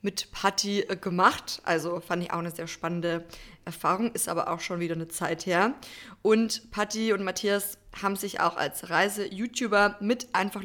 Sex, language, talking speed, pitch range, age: female, German, 170 wpm, 185-225 Hz, 20-39